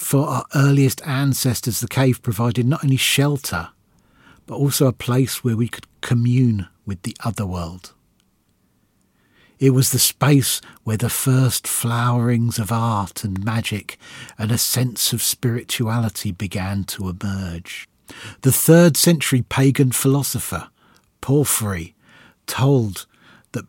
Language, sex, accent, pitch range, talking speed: English, male, British, 105-135 Hz, 125 wpm